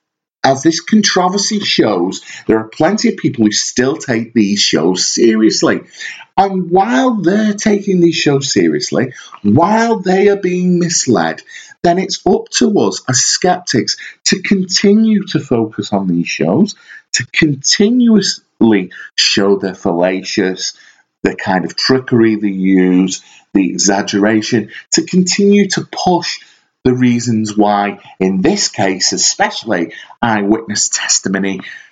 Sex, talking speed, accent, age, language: male, 125 wpm, British, 40-59, English